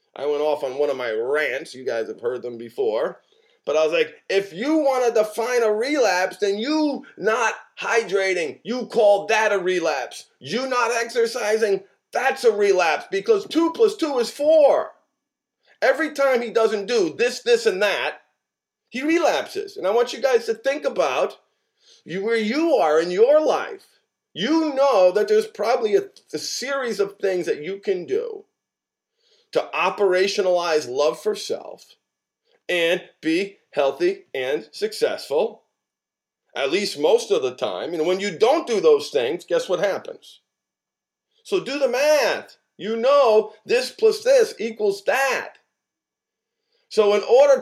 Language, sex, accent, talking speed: English, male, American, 155 wpm